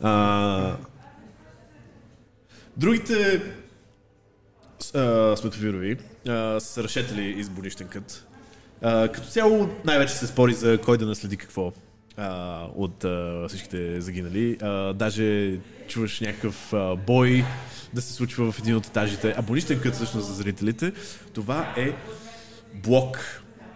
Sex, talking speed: male, 110 wpm